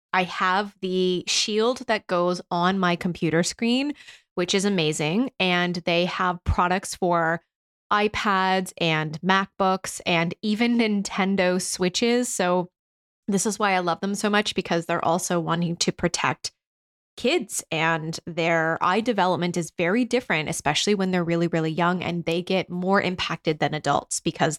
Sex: female